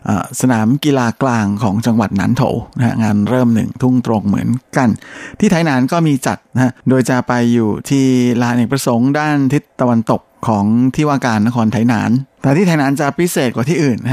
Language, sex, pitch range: Thai, male, 115-130 Hz